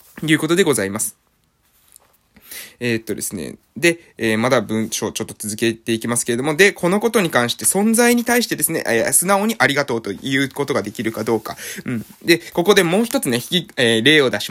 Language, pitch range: Japanese, 130-210 Hz